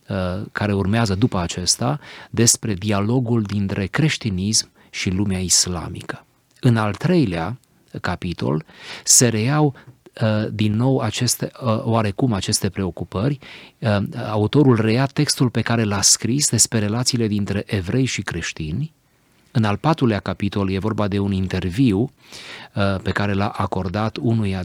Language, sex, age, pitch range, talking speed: Romanian, male, 30-49, 95-120 Hz, 120 wpm